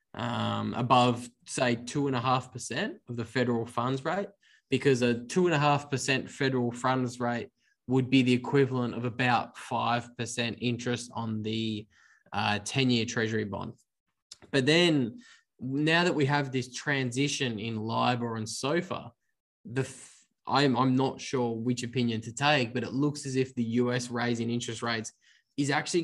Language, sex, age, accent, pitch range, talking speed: English, male, 10-29, Australian, 115-130 Hz, 145 wpm